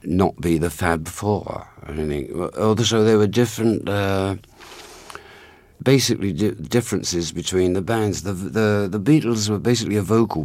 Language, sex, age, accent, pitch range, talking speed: English, male, 60-79, British, 80-100 Hz, 145 wpm